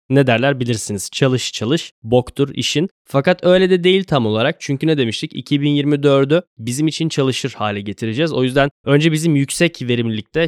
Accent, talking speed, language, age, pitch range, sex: native, 160 wpm, Turkish, 10-29, 115-155 Hz, male